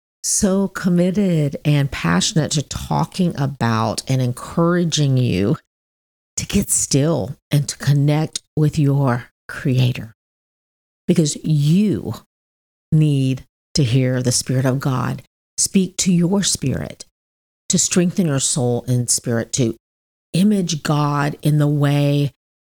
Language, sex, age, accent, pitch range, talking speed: English, female, 40-59, American, 120-160 Hz, 115 wpm